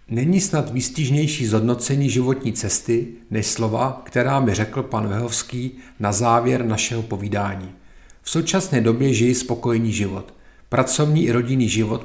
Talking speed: 135 wpm